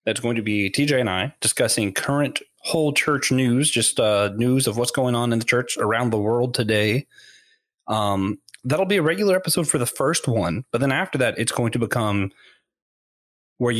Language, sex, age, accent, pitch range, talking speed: English, male, 20-39, American, 105-140 Hz, 195 wpm